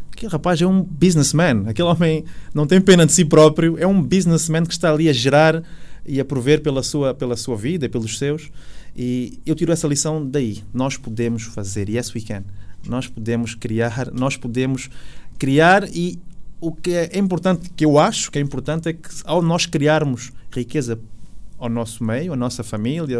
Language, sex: Portuguese, male